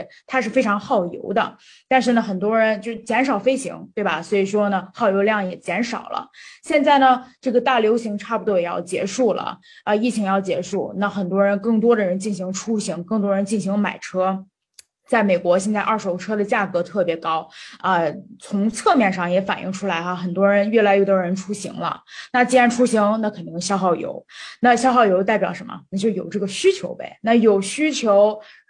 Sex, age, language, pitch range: female, 20-39, Chinese, 190-235 Hz